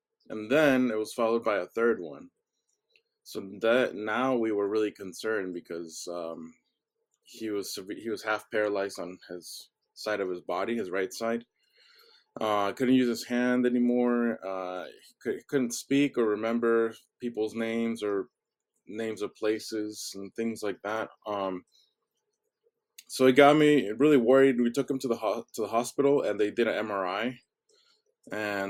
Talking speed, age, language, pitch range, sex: 160 wpm, 20-39, English, 100-130 Hz, male